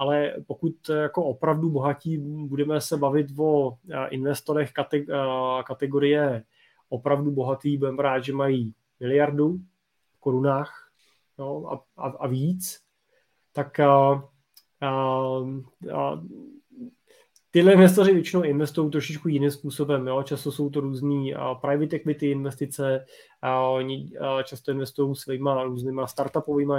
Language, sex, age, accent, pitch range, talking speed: Czech, male, 20-39, native, 135-145 Hz, 120 wpm